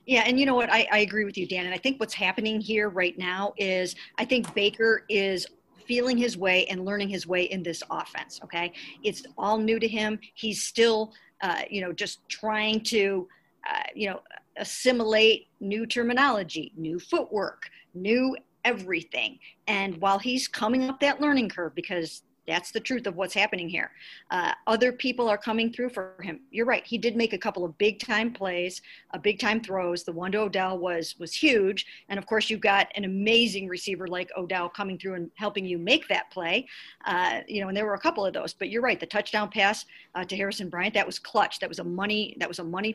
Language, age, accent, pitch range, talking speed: English, 50-69, American, 185-230 Hz, 215 wpm